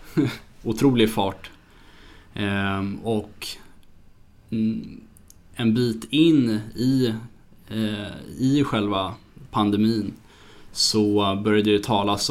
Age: 20-39